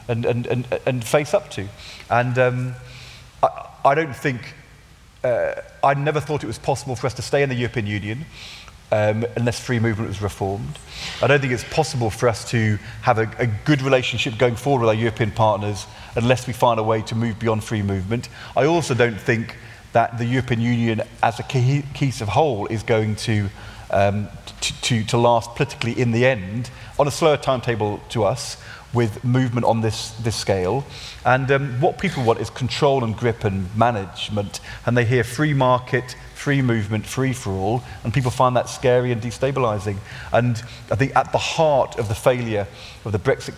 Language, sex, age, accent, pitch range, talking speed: English, male, 30-49, British, 110-130 Hz, 190 wpm